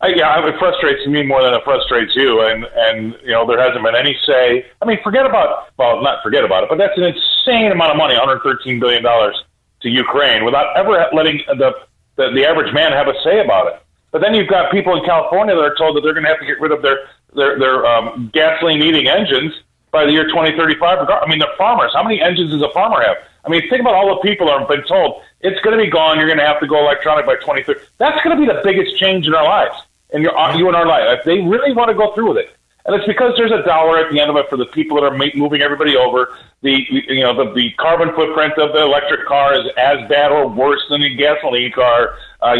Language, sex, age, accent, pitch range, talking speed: English, male, 40-59, American, 140-185 Hz, 255 wpm